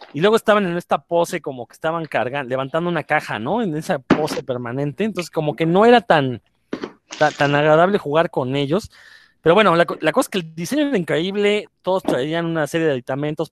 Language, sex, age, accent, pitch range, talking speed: Spanish, male, 30-49, Mexican, 145-180 Hz, 210 wpm